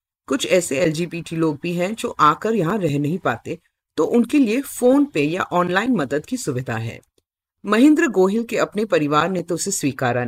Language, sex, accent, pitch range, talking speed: Hindi, female, native, 145-230 Hz, 185 wpm